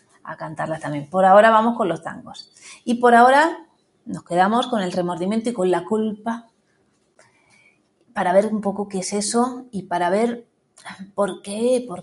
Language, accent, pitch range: Spanish, Spanish, 175-210 Hz